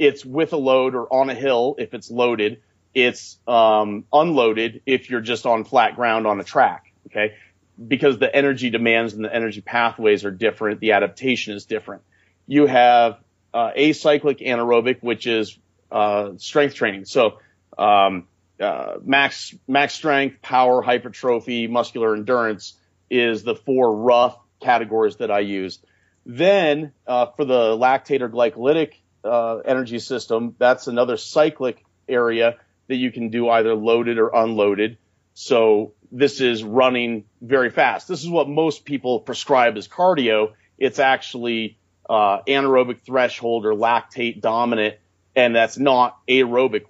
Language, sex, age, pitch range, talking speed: English, male, 40-59, 110-130 Hz, 145 wpm